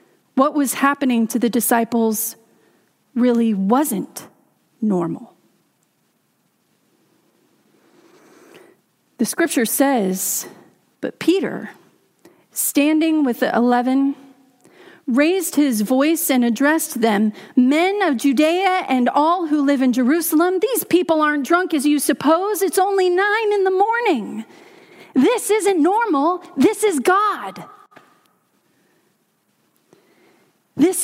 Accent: American